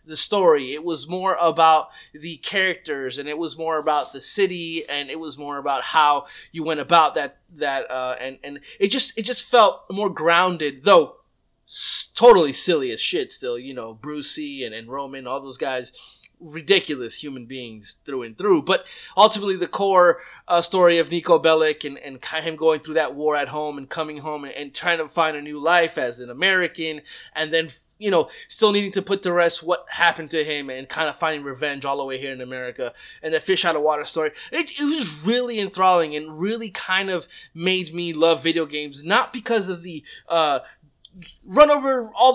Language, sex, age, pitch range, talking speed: English, male, 20-39, 150-195 Hz, 205 wpm